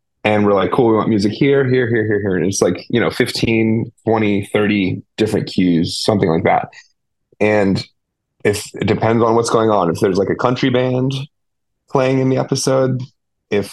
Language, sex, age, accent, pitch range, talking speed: English, male, 30-49, American, 95-115 Hz, 190 wpm